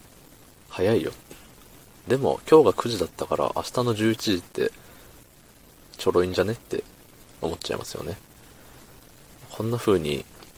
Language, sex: Japanese, male